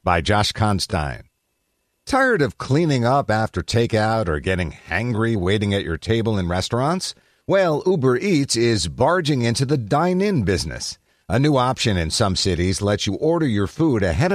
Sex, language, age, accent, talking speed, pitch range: male, English, 50-69, American, 165 wpm, 95-135 Hz